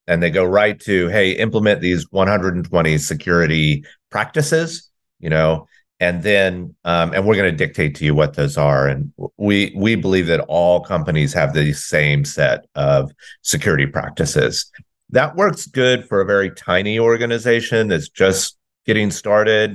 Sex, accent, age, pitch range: male, American, 40-59, 80-110 Hz